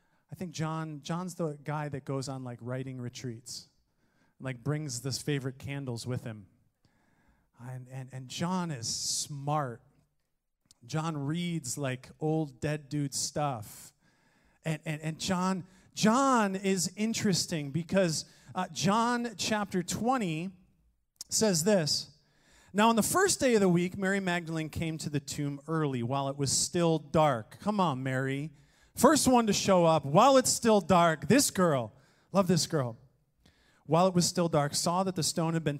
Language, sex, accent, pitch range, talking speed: English, male, American, 145-195 Hz, 160 wpm